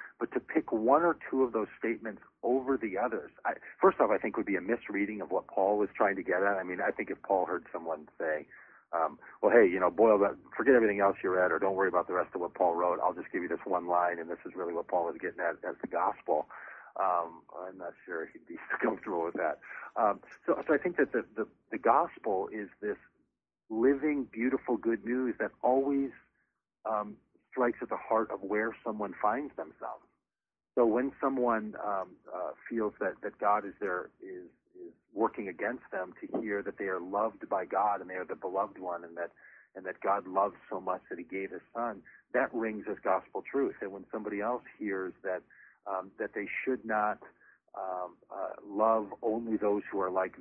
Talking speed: 220 wpm